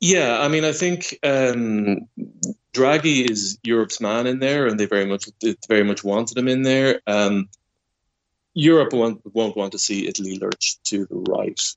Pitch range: 95-120 Hz